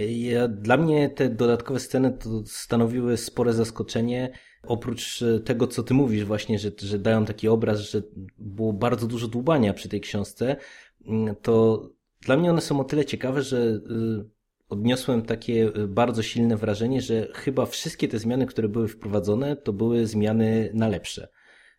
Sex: male